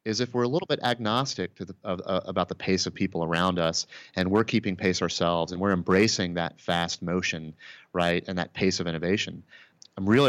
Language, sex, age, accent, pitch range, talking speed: English, male, 30-49, American, 90-105 Hz, 215 wpm